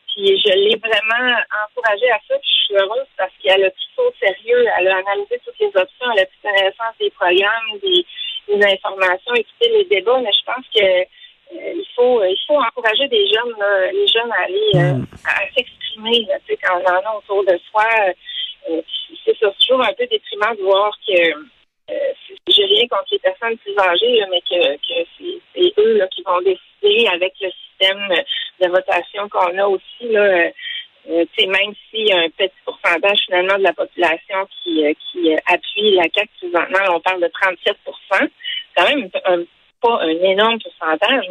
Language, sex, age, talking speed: French, female, 30-49, 185 wpm